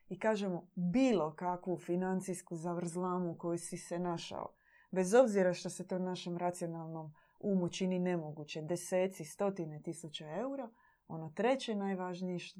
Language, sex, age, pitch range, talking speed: Croatian, female, 20-39, 165-195 Hz, 135 wpm